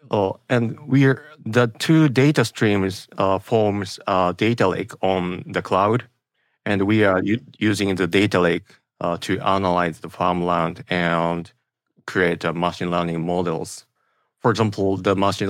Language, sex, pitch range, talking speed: English, male, 90-110 Hz, 145 wpm